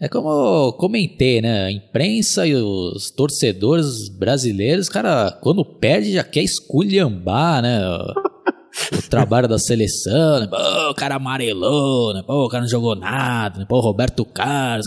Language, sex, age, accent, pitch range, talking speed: Portuguese, male, 20-39, Brazilian, 105-150 Hz, 160 wpm